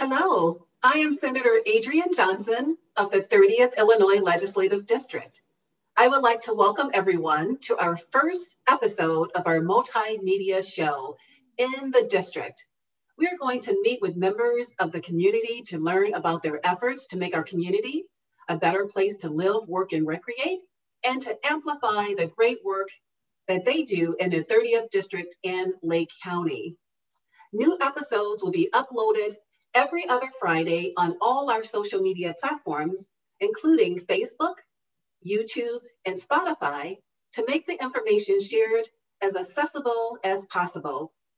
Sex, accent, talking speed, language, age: female, American, 145 wpm, English, 40-59